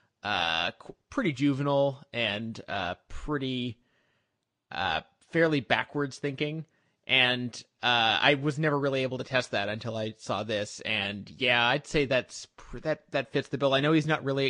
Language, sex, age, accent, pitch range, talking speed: English, male, 30-49, American, 120-145 Hz, 160 wpm